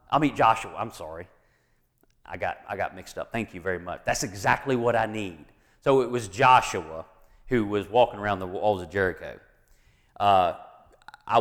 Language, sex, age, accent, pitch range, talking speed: English, male, 40-59, American, 105-130 Hz, 185 wpm